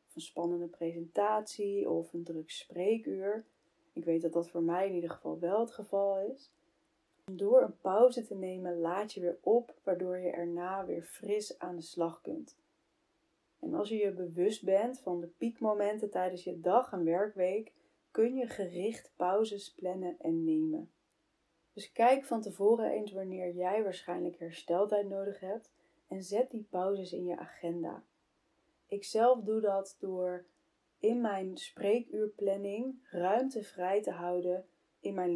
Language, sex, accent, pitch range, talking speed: Dutch, female, Dutch, 175-215 Hz, 155 wpm